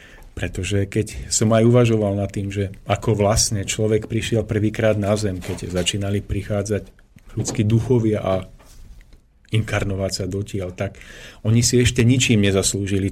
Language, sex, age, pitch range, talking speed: Slovak, male, 40-59, 100-115 Hz, 135 wpm